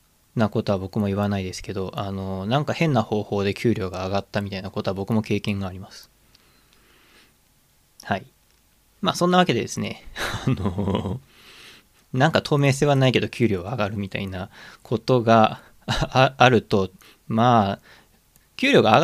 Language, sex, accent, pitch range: Japanese, male, native, 100-145 Hz